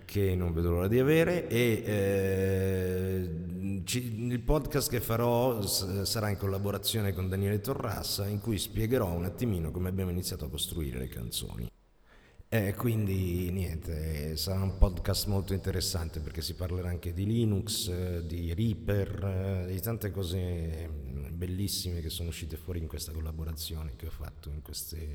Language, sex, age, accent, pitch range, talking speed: Italian, male, 50-69, native, 80-100 Hz, 150 wpm